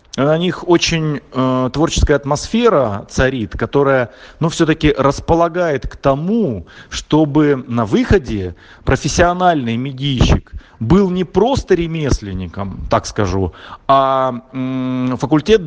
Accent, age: native, 30-49